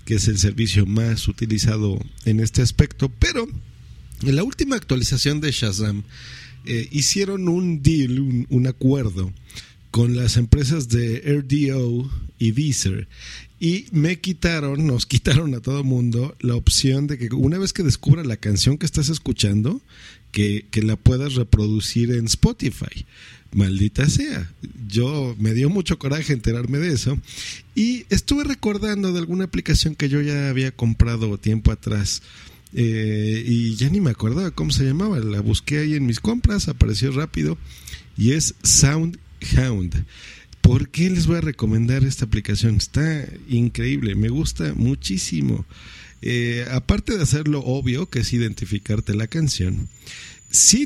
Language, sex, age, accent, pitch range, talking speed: Spanish, male, 50-69, Mexican, 105-145 Hz, 145 wpm